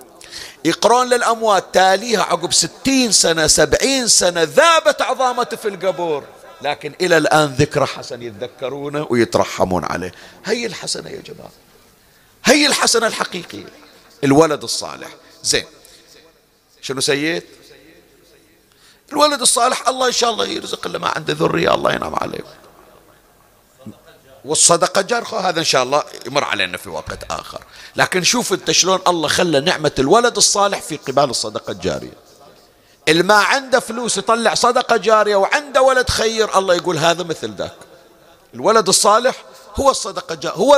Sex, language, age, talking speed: male, Arabic, 50-69, 135 wpm